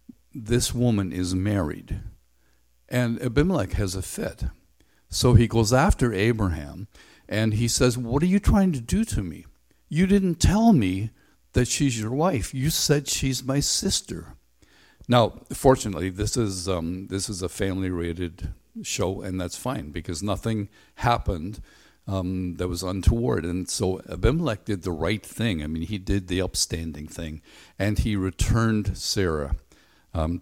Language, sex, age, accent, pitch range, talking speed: English, male, 60-79, American, 90-120 Hz, 150 wpm